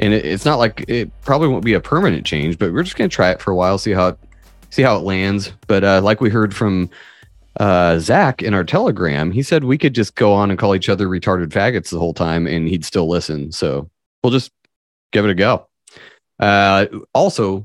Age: 30-49